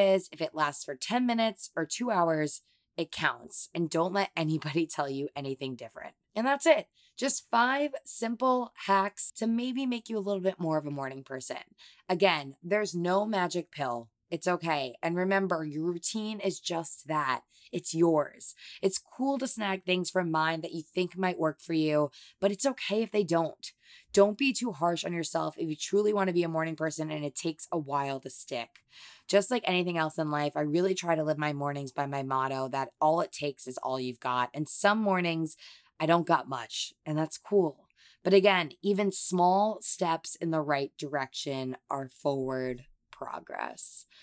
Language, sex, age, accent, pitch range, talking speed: English, female, 20-39, American, 140-195 Hz, 195 wpm